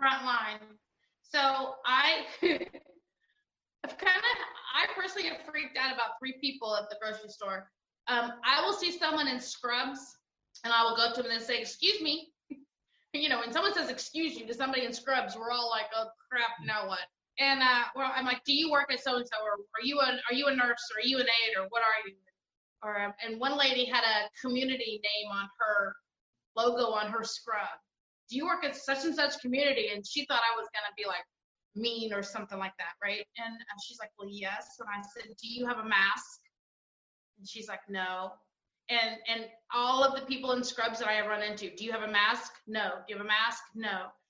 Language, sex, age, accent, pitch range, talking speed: English, female, 20-39, American, 215-270 Hz, 220 wpm